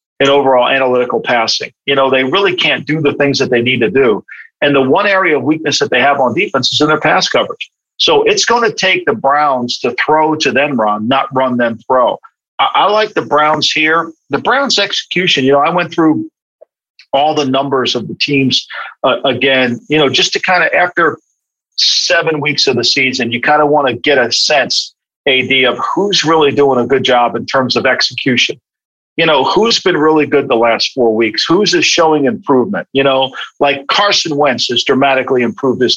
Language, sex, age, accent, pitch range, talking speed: English, male, 50-69, American, 130-155 Hz, 210 wpm